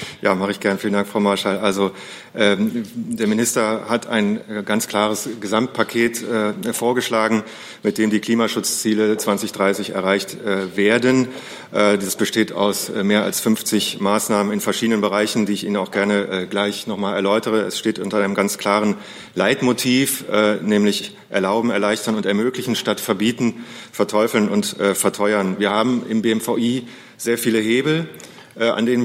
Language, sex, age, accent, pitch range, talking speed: German, male, 40-59, German, 105-115 Hz, 160 wpm